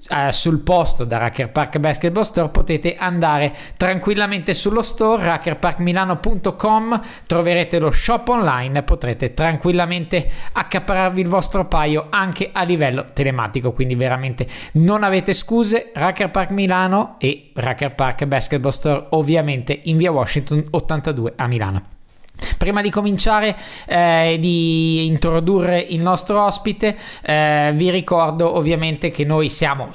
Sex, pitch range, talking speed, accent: male, 145-185 Hz, 130 wpm, native